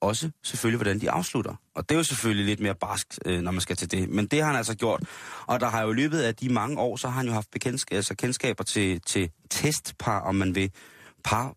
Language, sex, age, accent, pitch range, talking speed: Danish, male, 30-49, native, 95-125 Hz, 255 wpm